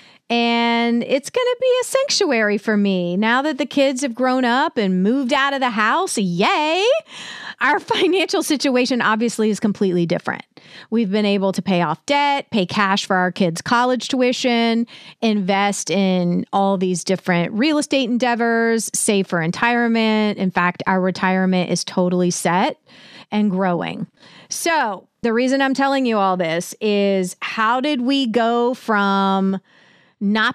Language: English